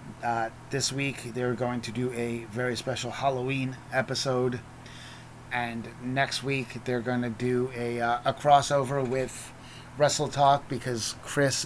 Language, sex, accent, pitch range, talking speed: English, male, American, 120-140 Hz, 145 wpm